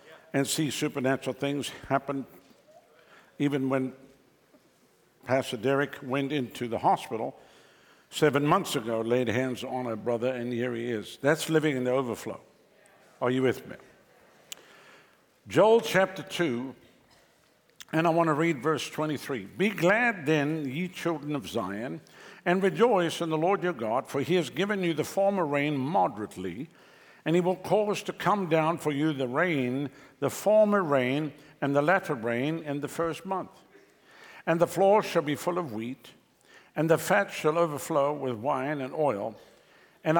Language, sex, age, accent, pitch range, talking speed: English, male, 60-79, American, 135-175 Hz, 160 wpm